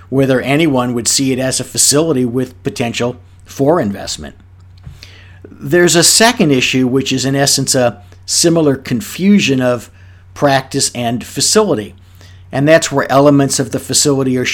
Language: English